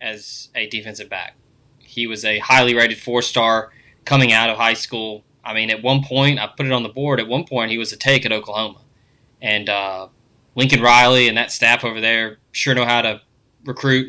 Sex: male